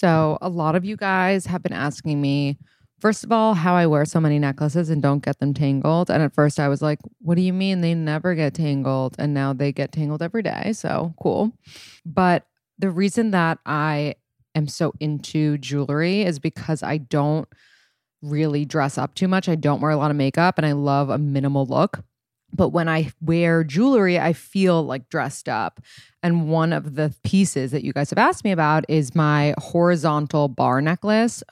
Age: 20-39